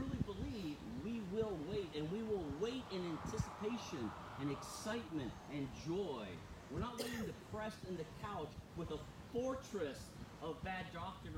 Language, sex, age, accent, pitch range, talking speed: English, male, 40-59, American, 135-225 Hz, 135 wpm